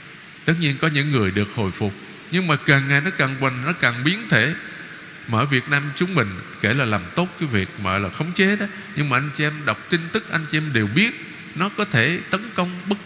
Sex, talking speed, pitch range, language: male, 255 wpm, 115-175 Hz, Vietnamese